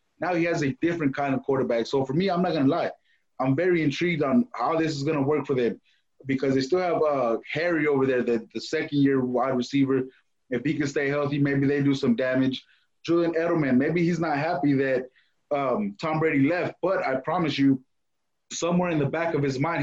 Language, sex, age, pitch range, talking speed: English, male, 20-39, 135-165 Hz, 220 wpm